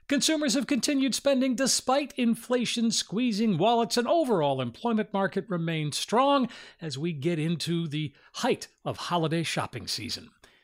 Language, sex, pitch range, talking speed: English, male, 155-230 Hz, 135 wpm